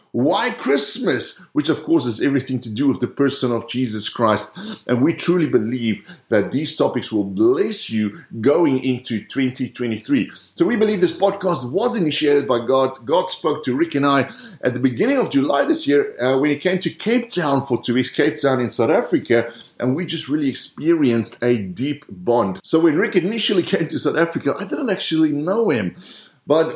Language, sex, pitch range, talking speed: English, male, 120-165 Hz, 195 wpm